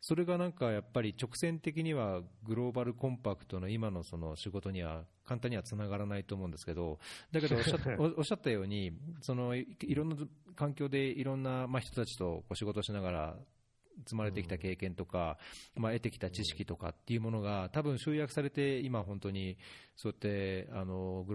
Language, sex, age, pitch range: Japanese, male, 40-59, 95-125 Hz